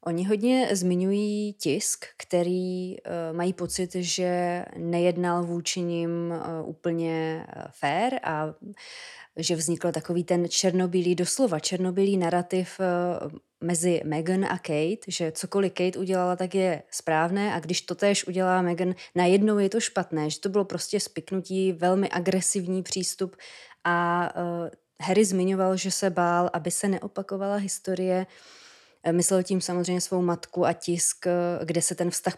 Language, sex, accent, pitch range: Czech, female, native, 175-195 Hz